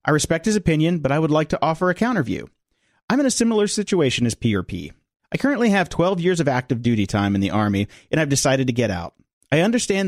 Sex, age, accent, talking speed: male, 40-59, American, 240 wpm